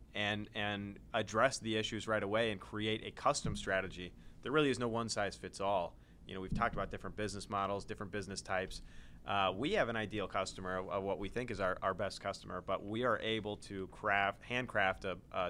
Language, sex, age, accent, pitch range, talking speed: English, male, 30-49, American, 95-110 Hz, 200 wpm